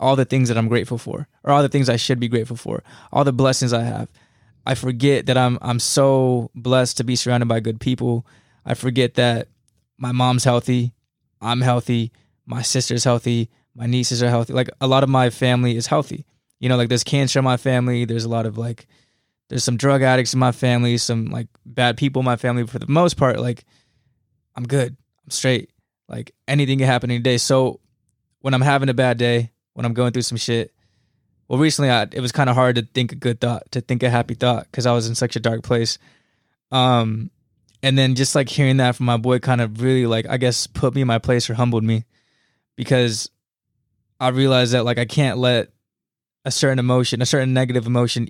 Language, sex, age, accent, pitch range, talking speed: English, male, 20-39, American, 120-130 Hz, 220 wpm